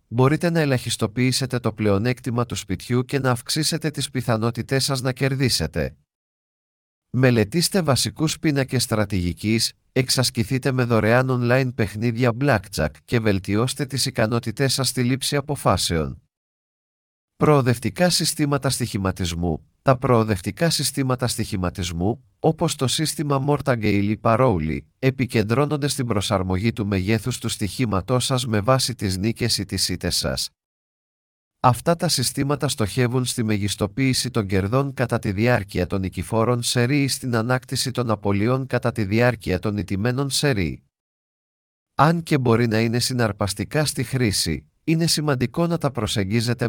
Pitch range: 105-135 Hz